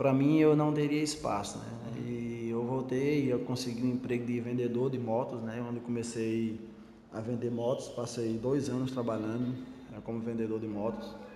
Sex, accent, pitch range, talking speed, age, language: male, Brazilian, 115-130 Hz, 180 wpm, 20-39, Portuguese